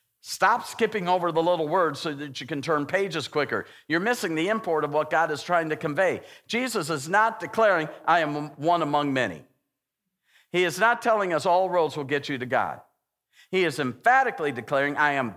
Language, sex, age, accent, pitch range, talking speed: English, male, 50-69, American, 145-190 Hz, 200 wpm